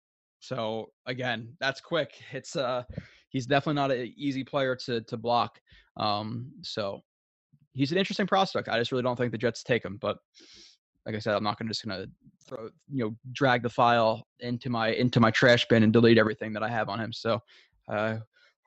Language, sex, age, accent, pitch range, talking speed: English, male, 20-39, American, 115-140 Hz, 200 wpm